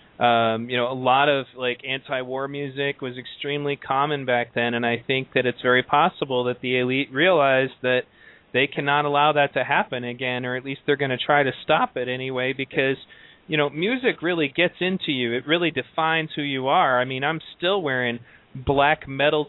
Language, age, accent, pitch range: English, 30-49, American, 130-155 Hz